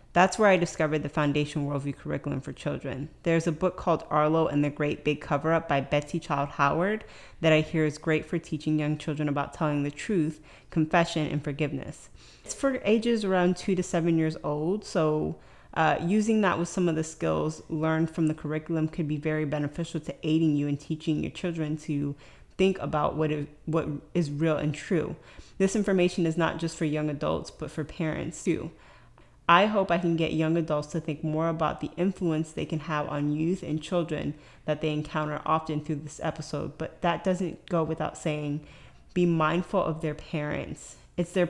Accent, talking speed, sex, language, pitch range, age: American, 195 wpm, female, English, 150-170 Hz, 30-49